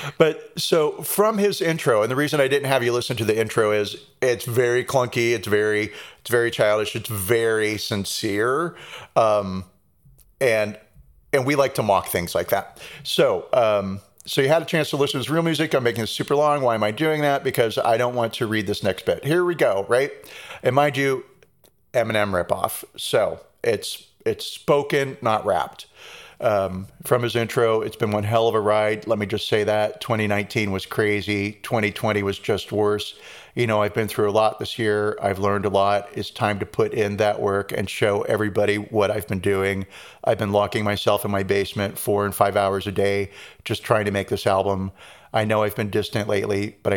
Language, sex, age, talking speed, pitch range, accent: English, male, 40-59, 205 wpm, 100-120 Hz, American